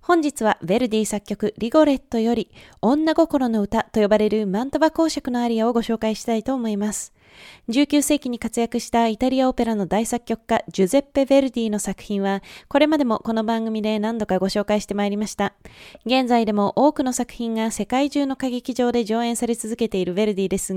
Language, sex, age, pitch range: Japanese, female, 20-39, 210-255 Hz